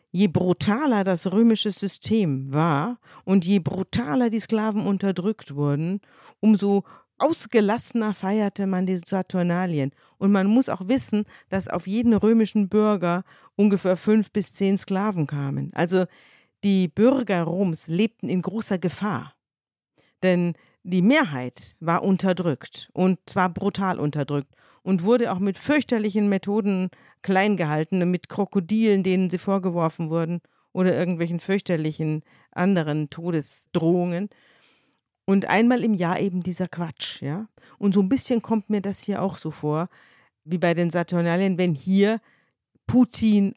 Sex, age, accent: female, 50-69, German